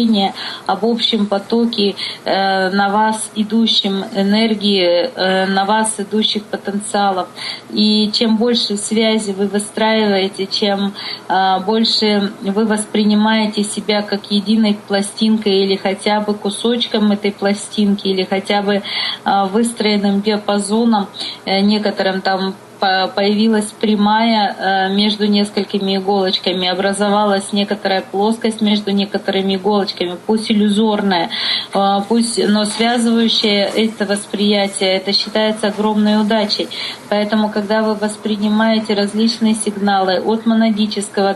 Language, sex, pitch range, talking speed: English, female, 200-220 Hz, 105 wpm